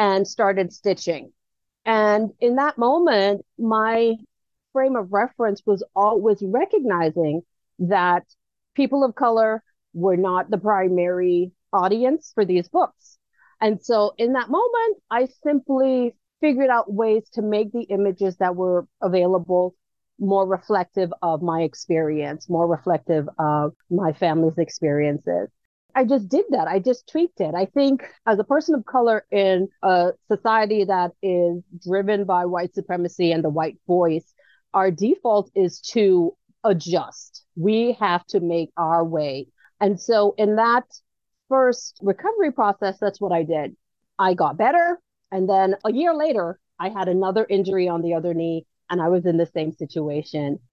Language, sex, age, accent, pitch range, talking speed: English, female, 40-59, American, 175-230 Hz, 150 wpm